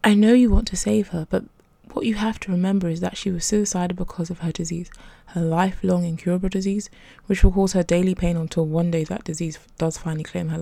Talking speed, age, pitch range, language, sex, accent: 230 wpm, 20-39, 165-195 Hz, English, female, British